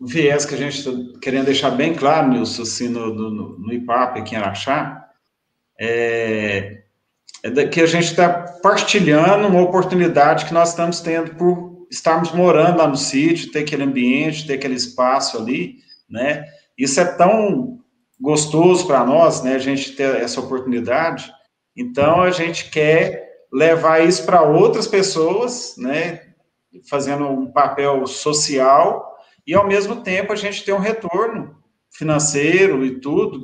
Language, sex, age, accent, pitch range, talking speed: Portuguese, male, 40-59, Brazilian, 135-175 Hz, 150 wpm